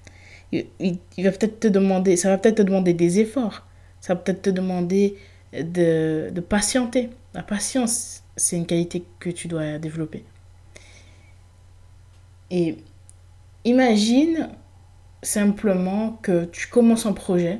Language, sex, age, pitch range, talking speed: French, female, 20-39, 145-215 Hz, 125 wpm